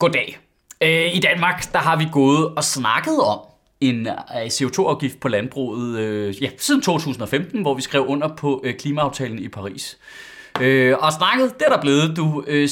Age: 30-49